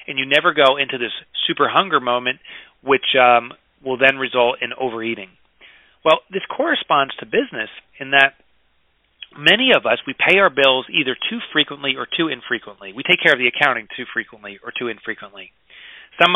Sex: male